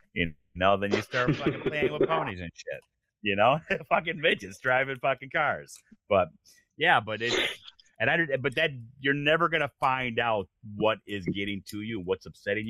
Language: English